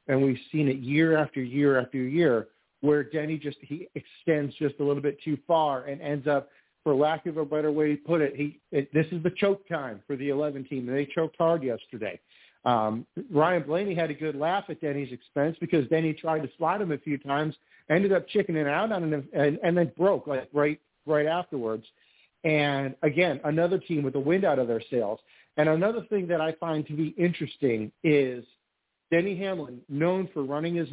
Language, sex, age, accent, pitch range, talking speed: English, male, 50-69, American, 135-165 Hz, 210 wpm